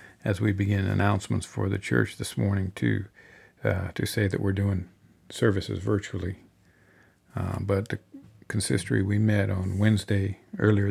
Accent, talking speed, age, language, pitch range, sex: American, 150 wpm, 50-69, English, 95-105 Hz, male